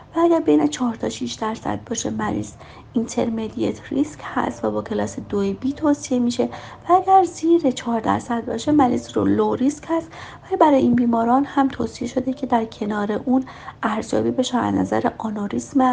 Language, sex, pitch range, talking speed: Persian, female, 210-265 Hz, 175 wpm